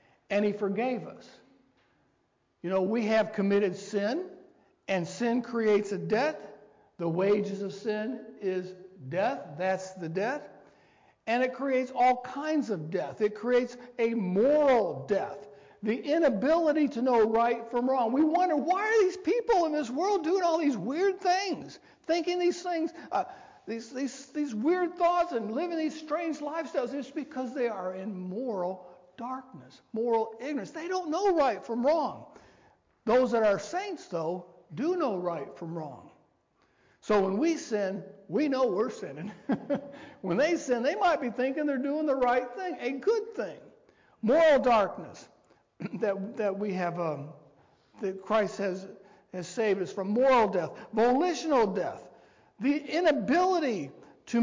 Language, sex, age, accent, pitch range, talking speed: English, male, 60-79, American, 200-310 Hz, 155 wpm